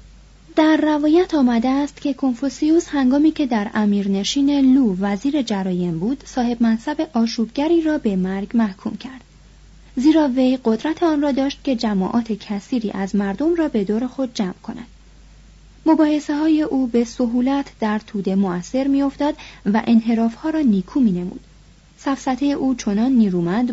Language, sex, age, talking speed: Persian, female, 30-49, 145 wpm